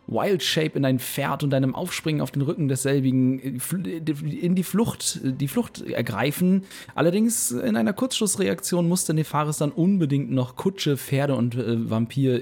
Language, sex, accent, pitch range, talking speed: German, male, German, 125-150 Hz, 150 wpm